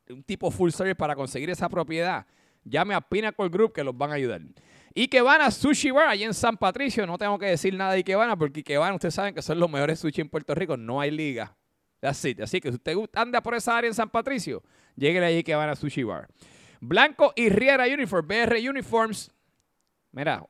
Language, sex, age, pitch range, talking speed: Spanish, male, 30-49, 155-215 Hz, 220 wpm